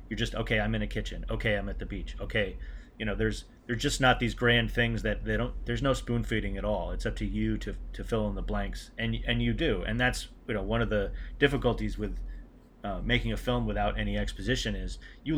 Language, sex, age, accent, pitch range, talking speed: English, male, 30-49, American, 100-120 Hz, 245 wpm